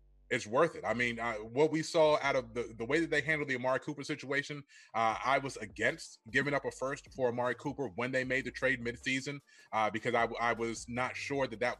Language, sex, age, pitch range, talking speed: English, male, 30-49, 110-130 Hz, 245 wpm